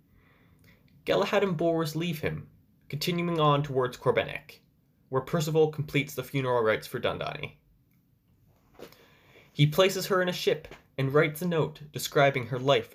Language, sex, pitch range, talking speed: English, male, 135-175 Hz, 140 wpm